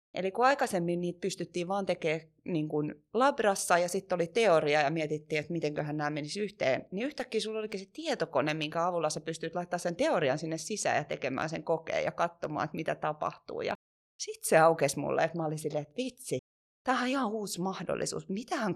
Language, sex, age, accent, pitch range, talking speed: Finnish, female, 30-49, native, 155-210 Hz, 190 wpm